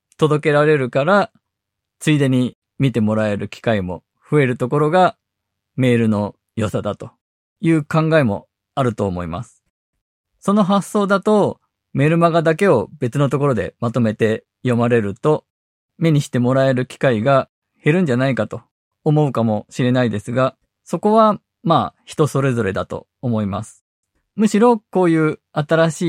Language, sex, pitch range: Japanese, male, 115-160 Hz